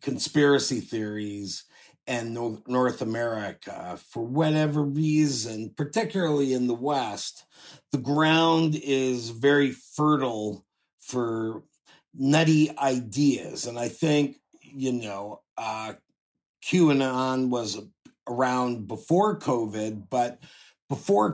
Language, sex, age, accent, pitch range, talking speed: English, male, 50-69, American, 110-140 Hz, 95 wpm